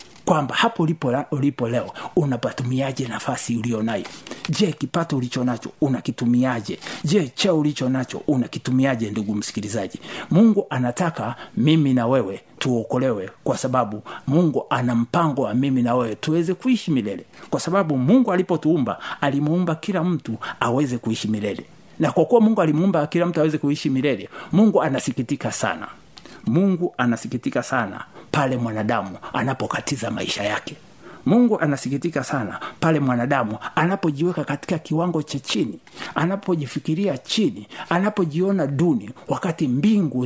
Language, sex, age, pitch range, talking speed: Swahili, male, 60-79, 125-175 Hz, 130 wpm